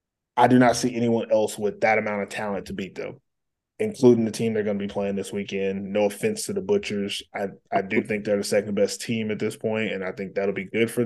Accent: American